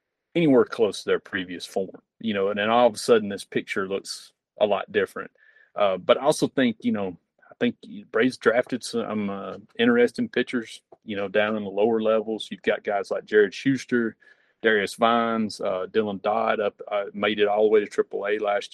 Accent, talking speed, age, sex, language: American, 200 wpm, 30-49, male, English